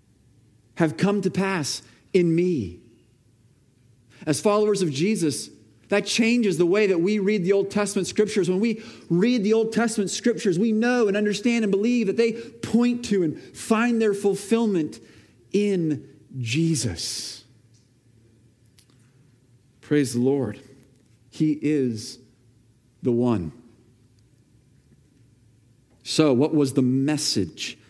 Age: 40-59